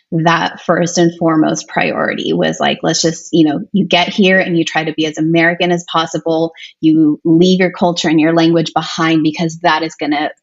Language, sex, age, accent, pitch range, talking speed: English, female, 20-39, American, 155-180 Hz, 205 wpm